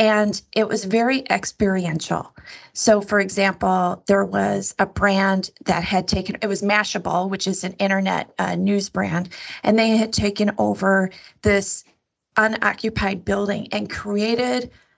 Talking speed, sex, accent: 140 wpm, female, American